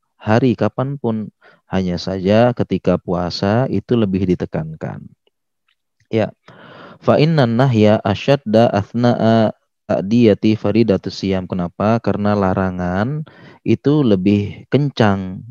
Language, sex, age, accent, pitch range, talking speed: Indonesian, male, 30-49, native, 95-115 Hz, 85 wpm